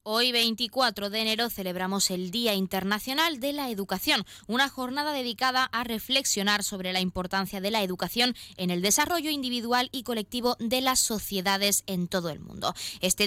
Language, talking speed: Spanish, 165 wpm